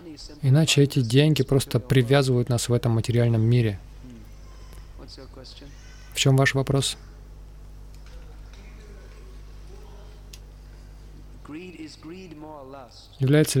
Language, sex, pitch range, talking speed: Russian, male, 120-140 Hz, 65 wpm